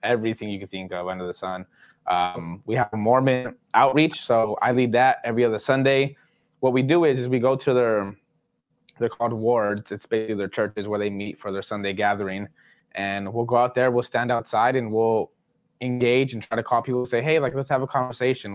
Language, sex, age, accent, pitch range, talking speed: English, male, 20-39, American, 105-125 Hz, 215 wpm